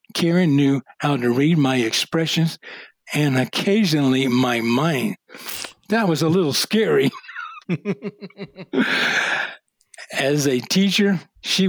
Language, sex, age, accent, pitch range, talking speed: English, male, 60-79, American, 135-170 Hz, 105 wpm